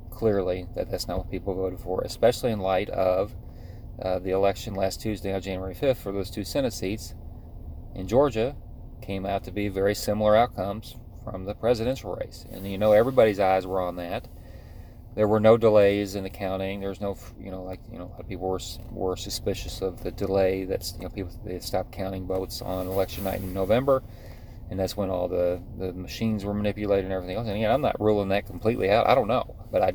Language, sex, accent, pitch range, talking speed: English, male, American, 95-105 Hz, 220 wpm